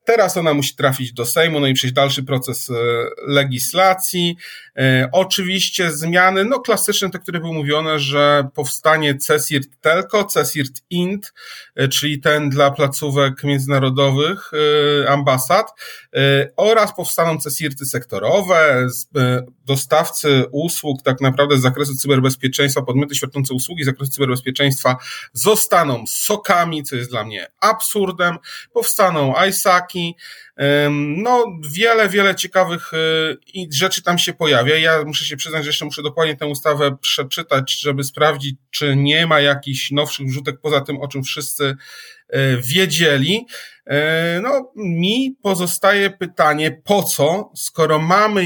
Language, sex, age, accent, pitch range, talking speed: Polish, male, 40-59, native, 140-175 Hz, 125 wpm